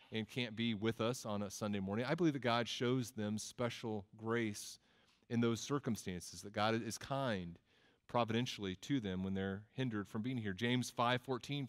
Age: 30-49